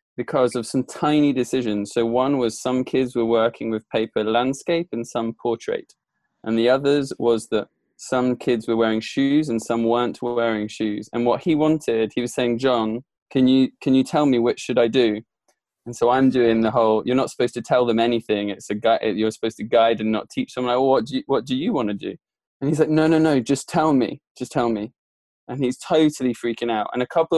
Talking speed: 235 wpm